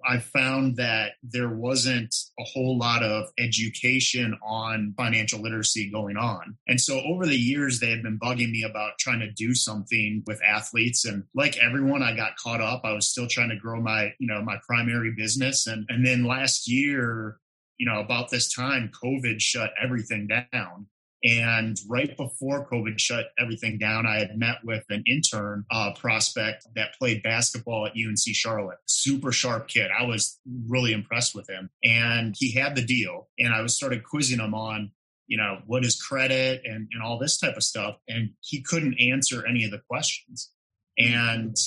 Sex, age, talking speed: male, 30-49, 185 wpm